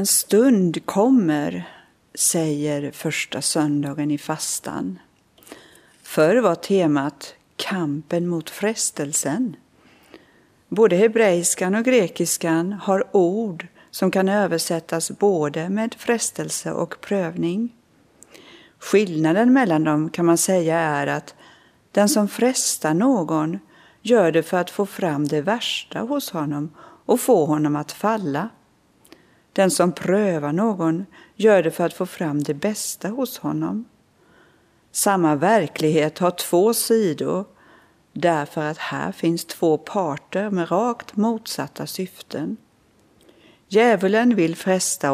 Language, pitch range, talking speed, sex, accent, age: Swedish, 155-210 Hz, 115 wpm, female, native, 50-69